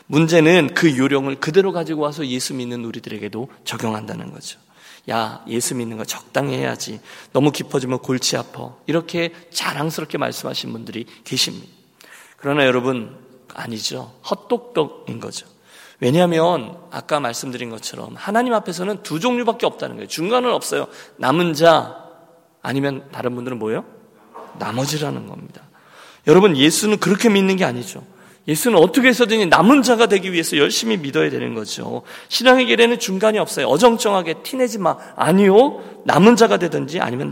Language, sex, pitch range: Korean, male, 125-190 Hz